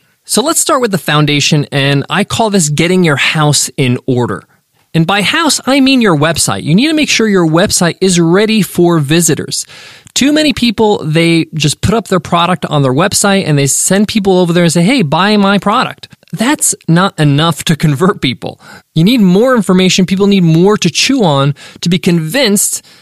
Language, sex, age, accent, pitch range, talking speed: English, male, 20-39, American, 145-195 Hz, 200 wpm